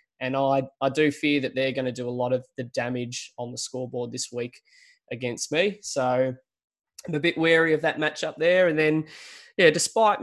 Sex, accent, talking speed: male, Australian, 205 wpm